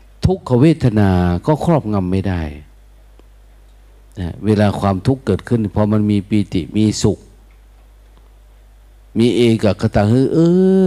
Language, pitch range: Thai, 95-120 Hz